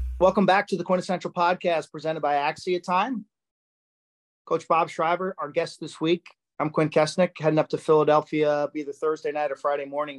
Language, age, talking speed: English, 40-59, 175 wpm